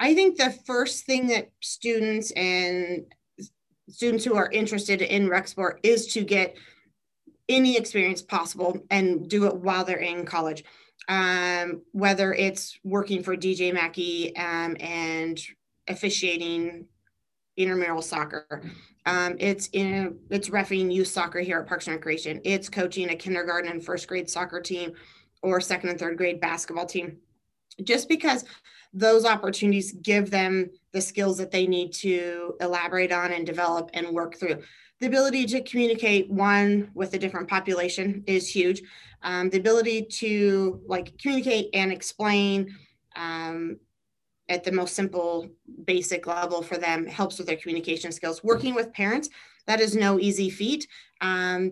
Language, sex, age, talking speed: English, female, 20-39, 150 wpm